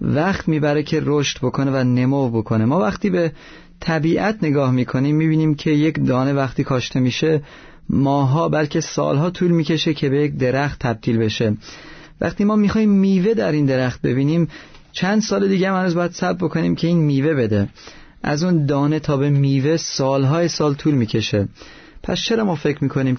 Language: Persian